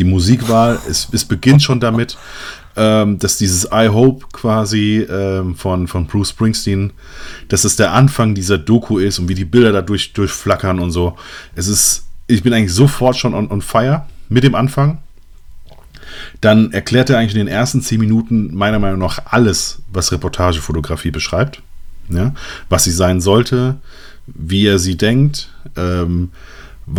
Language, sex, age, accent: German, male, 30-49, German